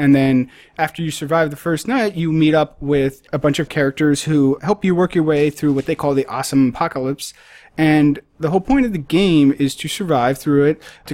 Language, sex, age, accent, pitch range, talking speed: English, male, 30-49, American, 130-160 Hz, 225 wpm